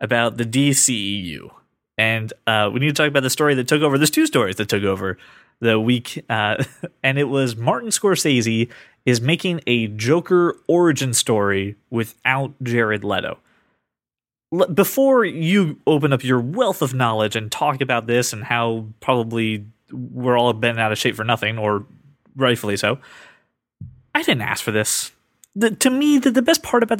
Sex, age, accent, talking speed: male, 20-39, American, 170 wpm